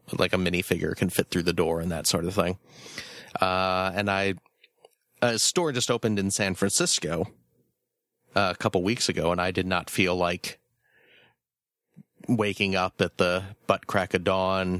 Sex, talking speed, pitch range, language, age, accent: male, 165 wpm, 95-110 Hz, English, 30-49, American